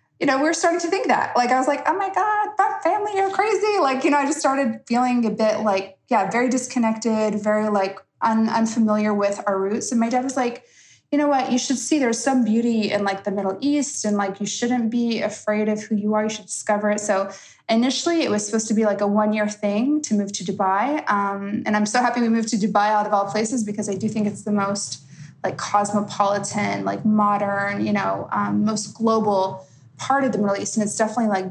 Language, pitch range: English, 205-245 Hz